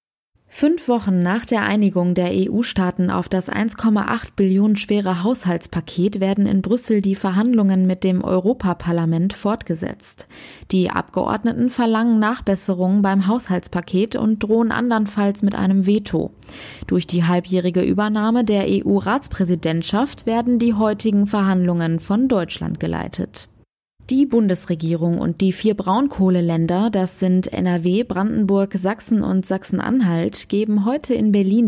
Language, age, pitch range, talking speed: German, 20-39, 180-220 Hz, 120 wpm